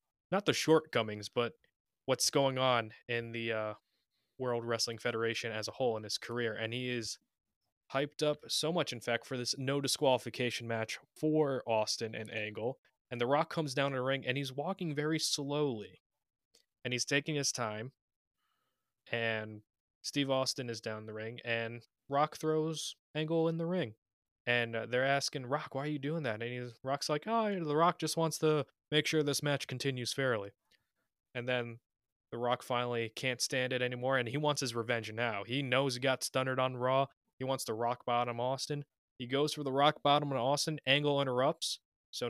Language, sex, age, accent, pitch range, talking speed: English, male, 20-39, American, 120-145 Hz, 190 wpm